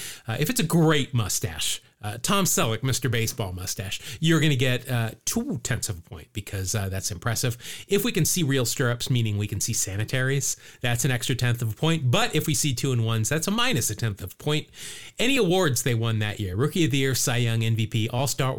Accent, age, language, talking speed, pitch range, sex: American, 40-59, English, 230 wpm, 115-145 Hz, male